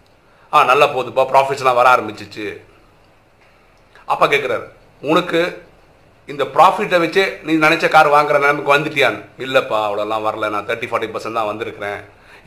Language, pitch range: Tamil, 110-155 Hz